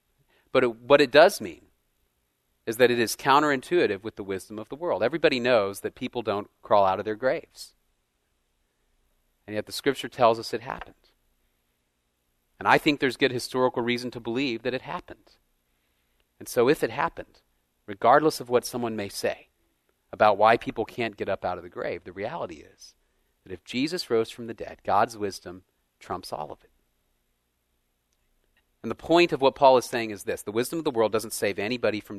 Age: 40-59